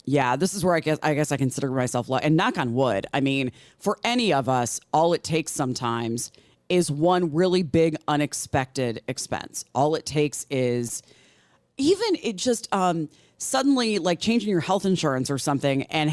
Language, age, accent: English, 30-49, American